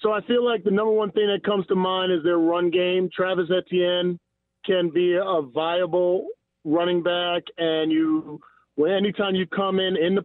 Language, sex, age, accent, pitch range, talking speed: English, male, 40-59, American, 170-195 Hz, 185 wpm